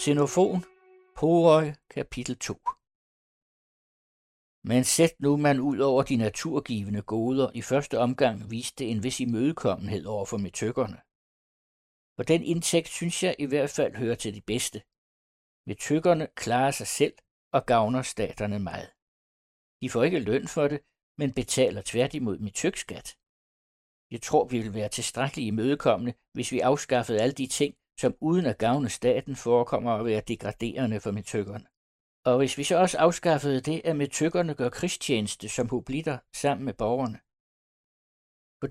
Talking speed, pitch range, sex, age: 145 wpm, 110-150 Hz, male, 60-79